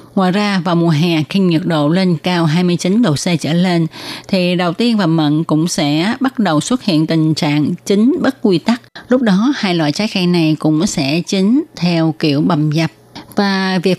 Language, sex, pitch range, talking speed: Vietnamese, female, 155-210 Hz, 205 wpm